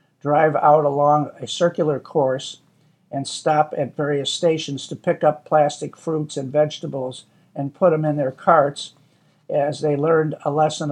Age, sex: 60-79, male